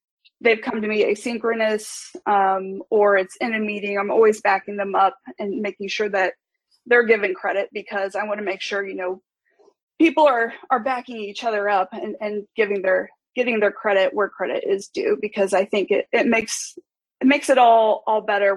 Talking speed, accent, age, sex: 195 wpm, American, 20-39, female